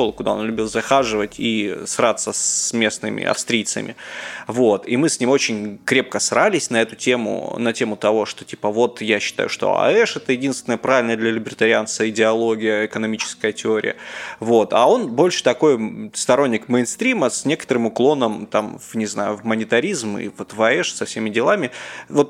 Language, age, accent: Russian, 20-39, native